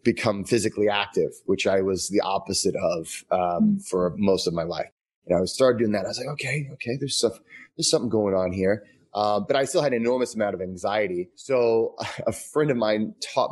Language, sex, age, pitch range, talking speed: English, male, 30-49, 100-130 Hz, 215 wpm